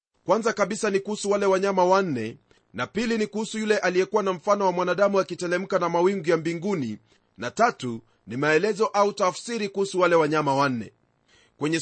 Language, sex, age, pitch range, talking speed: Swahili, male, 40-59, 180-220 Hz, 170 wpm